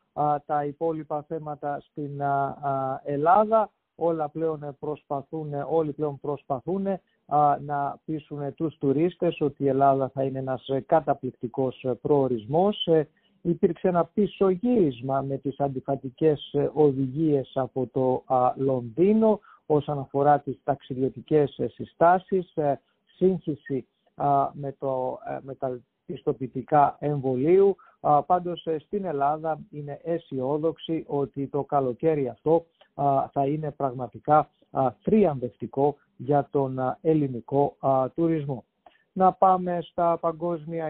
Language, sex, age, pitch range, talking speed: English, male, 50-69, 140-165 Hz, 100 wpm